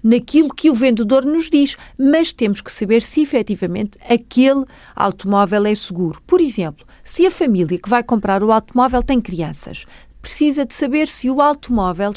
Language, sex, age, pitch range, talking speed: Portuguese, female, 40-59, 200-280 Hz, 170 wpm